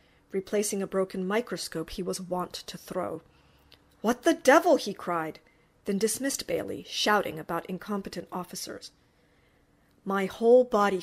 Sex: female